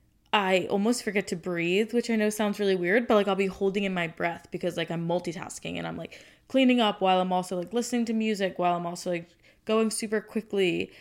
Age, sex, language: 20-39, female, English